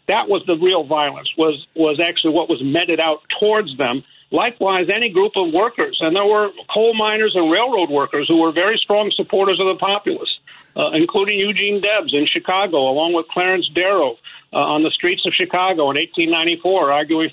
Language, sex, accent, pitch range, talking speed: English, male, American, 165-210 Hz, 185 wpm